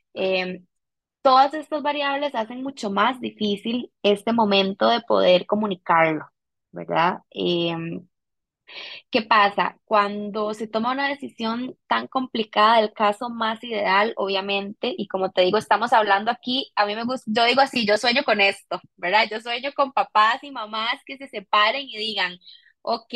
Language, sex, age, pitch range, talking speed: Spanish, female, 20-39, 190-240 Hz, 155 wpm